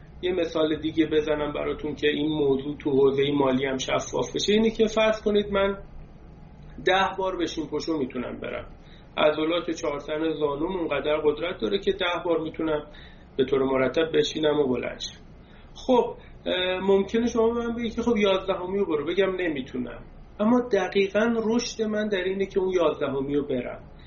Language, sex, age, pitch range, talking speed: Persian, male, 30-49, 145-195 Hz, 155 wpm